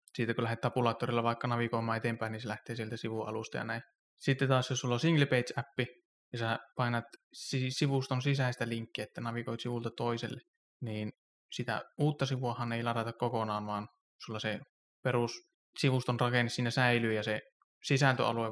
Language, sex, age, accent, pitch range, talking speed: Finnish, male, 20-39, native, 115-125 Hz, 160 wpm